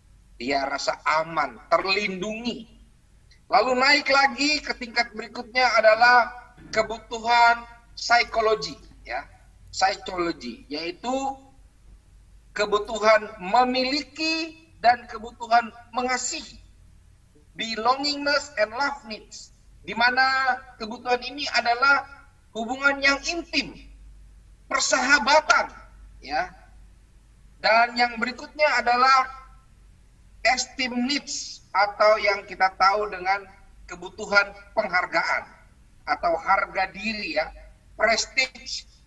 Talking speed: 80 wpm